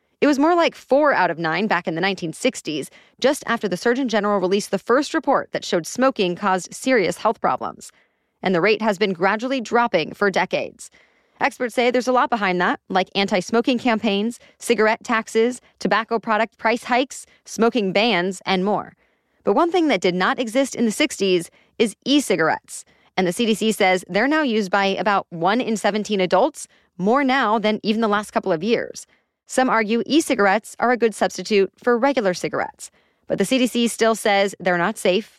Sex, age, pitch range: female, 30-49, 195-250 Hz